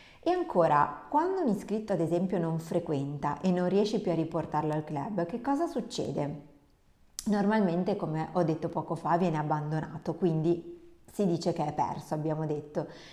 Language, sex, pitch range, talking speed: Italian, female, 160-205 Hz, 165 wpm